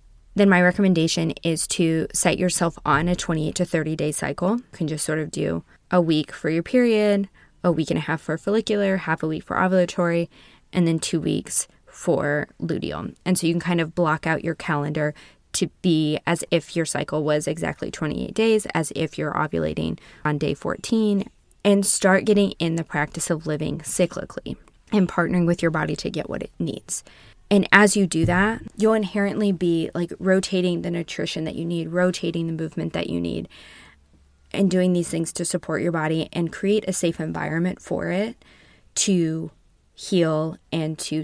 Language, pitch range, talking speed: English, 155-190 Hz, 190 wpm